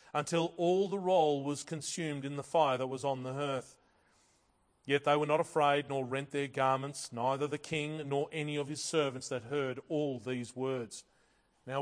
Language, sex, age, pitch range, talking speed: English, male, 40-59, 140-165 Hz, 190 wpm